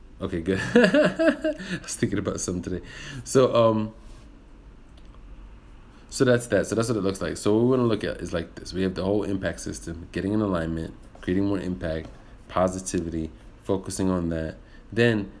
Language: English